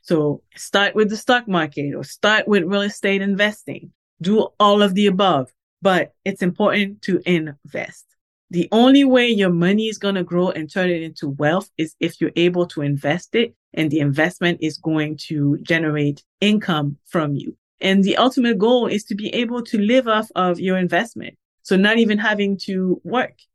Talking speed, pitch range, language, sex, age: 185 wpm, 170-215 Hz, English, female, 30-49